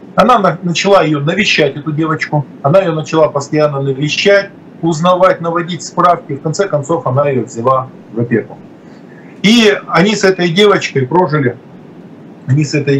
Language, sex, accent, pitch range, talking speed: Russian, male, native, 145-195 Hz, 145 wpm